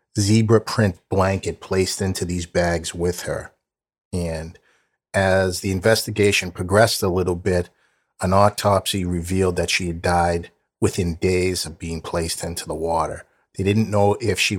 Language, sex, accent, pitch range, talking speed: English, male, American, 85-100 Hz, 150 wpm